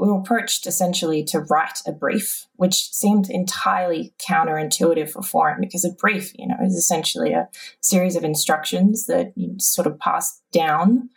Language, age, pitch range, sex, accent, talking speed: English, 20-39, 170-250 Hz, female, Australian, 165 wpm